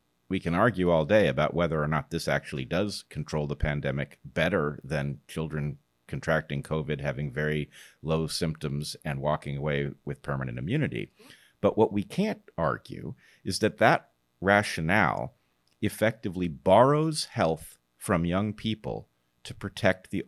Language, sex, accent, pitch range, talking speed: English, male, American, 70-95 Hz, 140 wpm